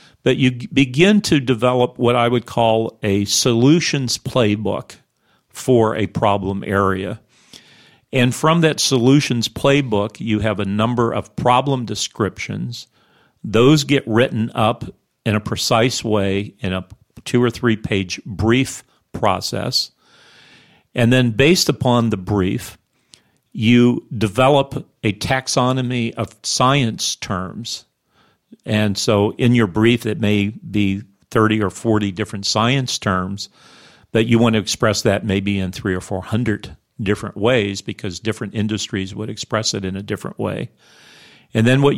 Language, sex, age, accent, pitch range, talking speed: English, male, 50-69, American, 105-125 Hz, 140 wpm